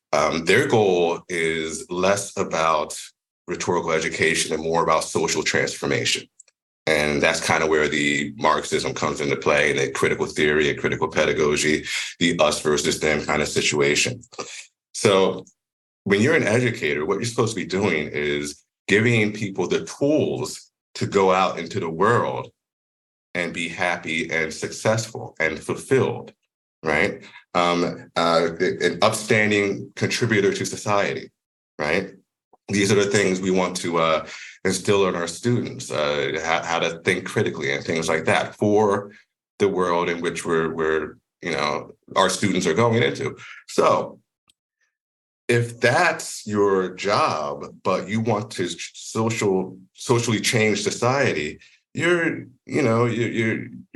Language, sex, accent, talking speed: English, male, American, 140 wpm